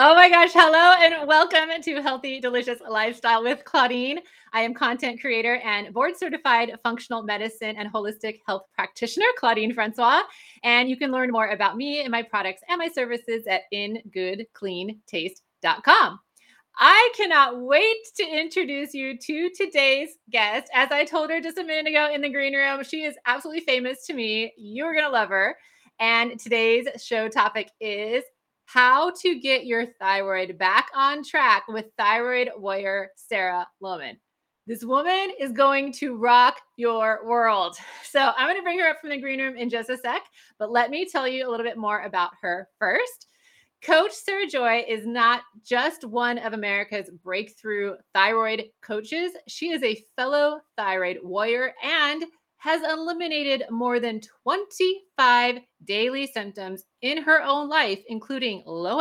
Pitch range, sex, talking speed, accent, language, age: 220-295 Hz, female, 160 wpm, American, English, 30-49